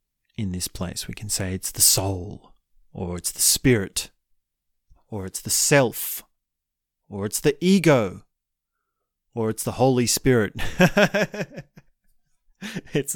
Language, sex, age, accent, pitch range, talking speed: English, male, 30-49, Australian, 100-130 Hz, 125 wpm